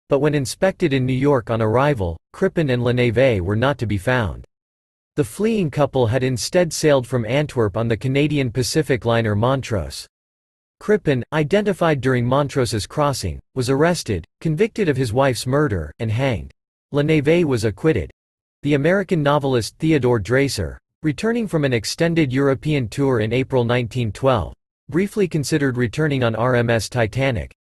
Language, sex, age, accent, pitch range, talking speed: English, male, 40-59, American, 115-150 Hz, 145 wpm